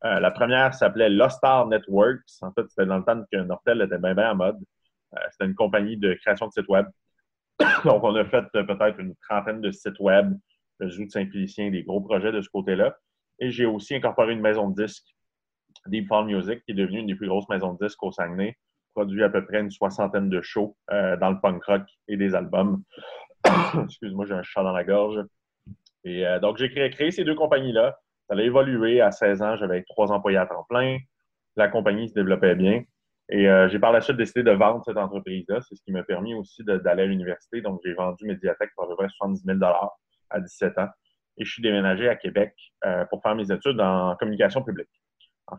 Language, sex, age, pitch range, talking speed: French, male, 30-49, 95-115 Hz, 220 wpm